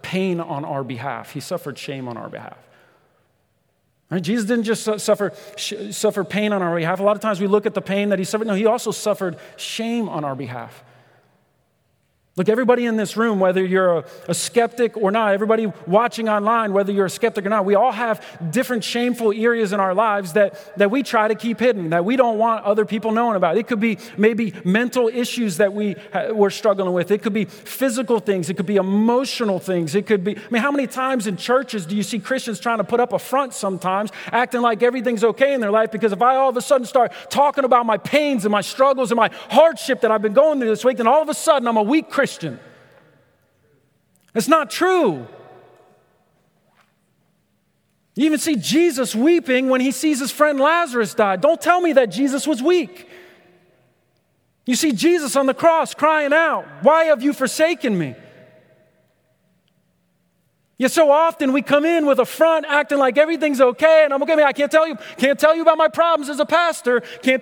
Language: English